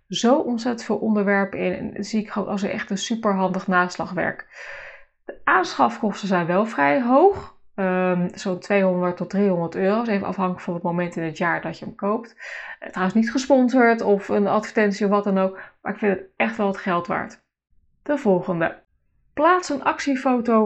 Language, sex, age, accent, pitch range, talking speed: Dutch, female, 20-39, Dutch, 190-250 Hz, 190 wpm